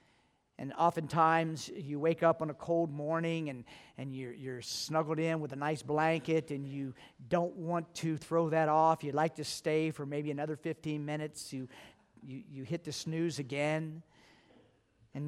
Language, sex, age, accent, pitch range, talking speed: English, male, 50-69, American, 150-205 Hz, 175 wpm